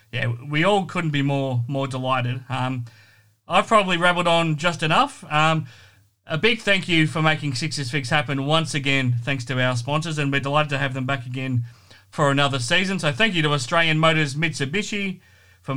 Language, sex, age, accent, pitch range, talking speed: English, male, 30-49, Australian, 135-165 Hz, 190 wpm